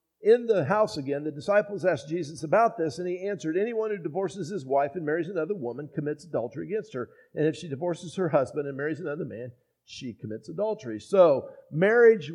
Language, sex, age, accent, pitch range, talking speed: English, male, 50-69, American, 150-205 Hz, 200 wpm